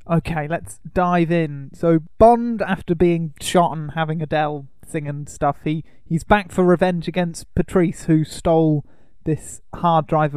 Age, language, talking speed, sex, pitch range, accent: 20-39, English, 155 wpm, male, 145-170 Hz, British